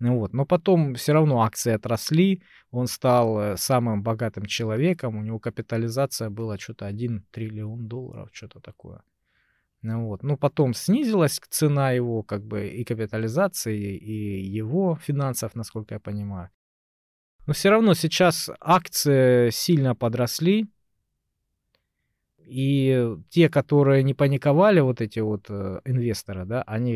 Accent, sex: native, male